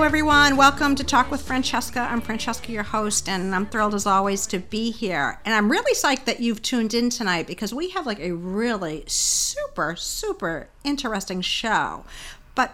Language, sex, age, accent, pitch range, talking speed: English, female, 50-69, American, 190-265 Hz, 180 wpm